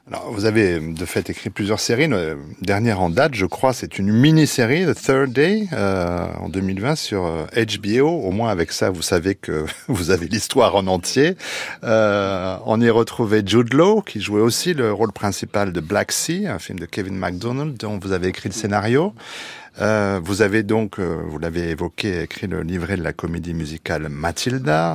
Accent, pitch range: French, 90-125 Hz